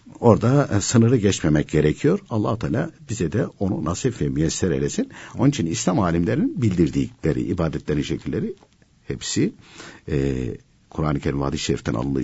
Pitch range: 75-115 Hz